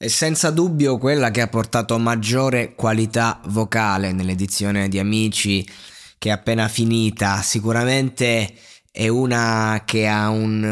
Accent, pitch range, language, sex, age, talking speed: native, 105-130 Hz, Italian, male, 20-39, 130 wpm